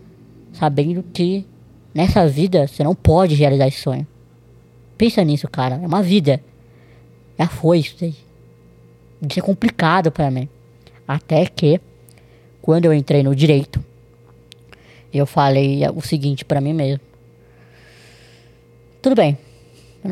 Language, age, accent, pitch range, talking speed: Portuguese, 20-39, Brazilian, 130-165 Hz, 135 wpm